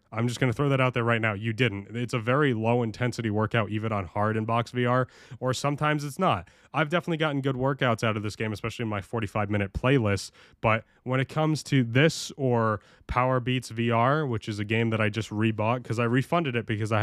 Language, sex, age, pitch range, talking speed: English, male, 20-39, 105-130 Hz, 235 wpm